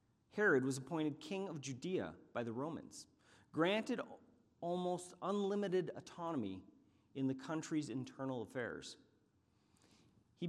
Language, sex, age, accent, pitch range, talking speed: English, male, 40-59, American, 115-160 Hz, 110 wpm